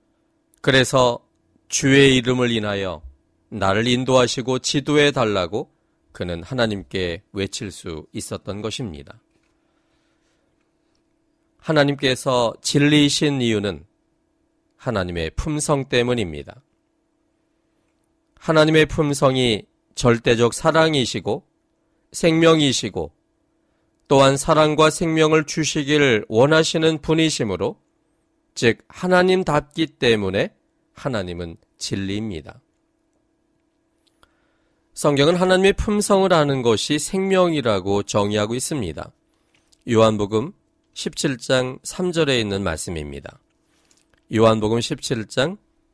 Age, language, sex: 40-59, Korean, male